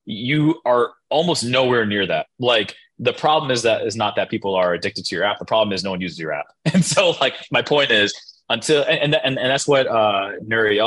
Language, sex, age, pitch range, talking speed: English, male, 20-39, 105-135 Hz, 230 wpm